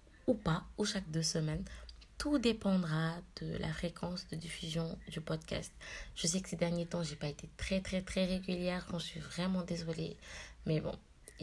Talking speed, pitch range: 190 wpm, 165-190 Hz